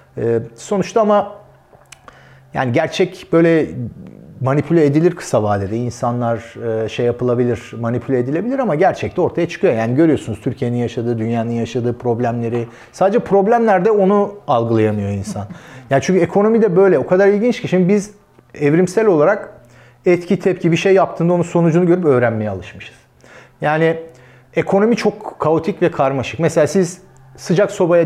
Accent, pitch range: native, 130-210 Hz